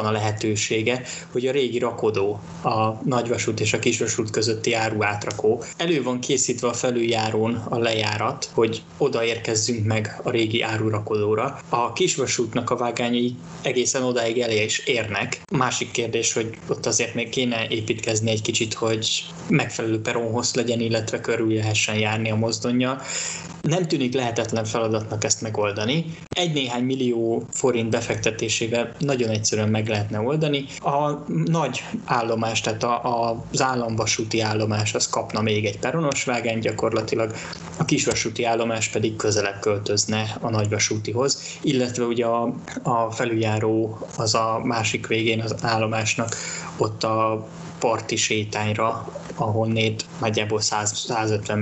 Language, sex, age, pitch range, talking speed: Hungarian, male, 20-39, 110-125 Hz, 135 wpm